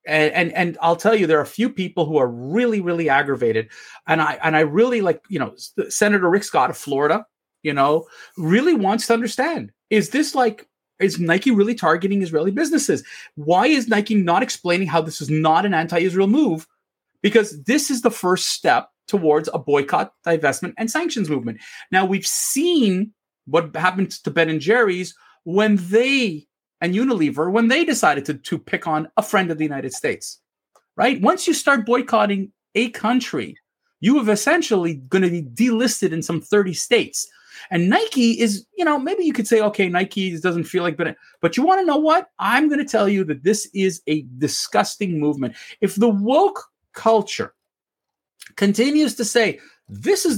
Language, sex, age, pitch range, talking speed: English, male, 30-49, 165-235 Hz, 180 wpm